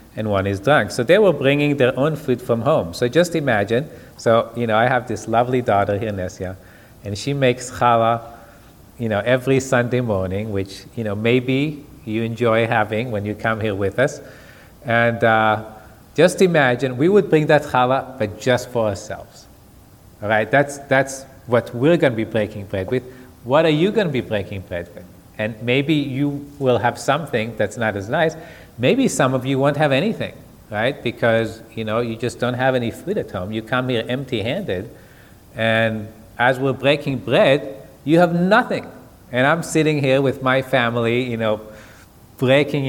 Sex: male